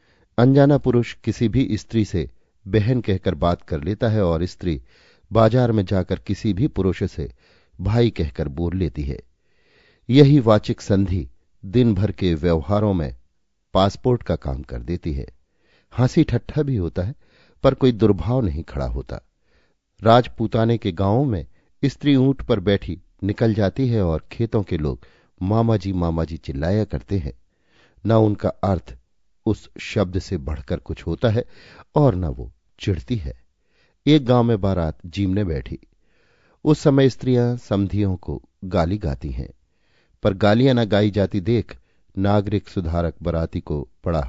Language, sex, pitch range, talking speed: Hindi, male, 80-115 Hz, 150 wpm